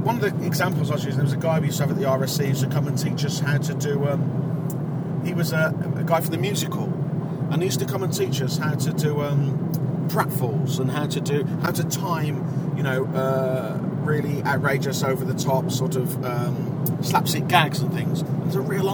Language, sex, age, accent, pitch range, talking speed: English, male, 40-59, British, 145-165 Hz, 230 wpm